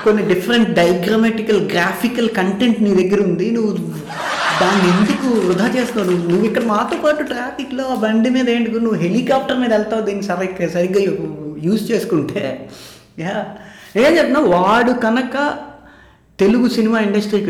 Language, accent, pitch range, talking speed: Telugu, native, 160-225 Hz, 130 wpm